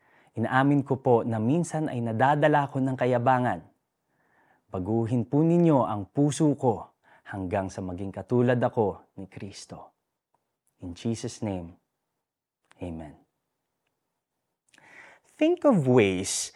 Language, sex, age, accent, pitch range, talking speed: Filipino, male, 30-49, native, 100-145 Hz, 110 wpm